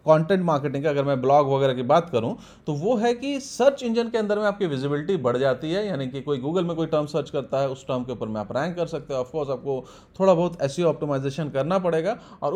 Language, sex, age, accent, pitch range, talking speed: Hindi, male, 30-49, native, 140-200 Hz, 255 wpm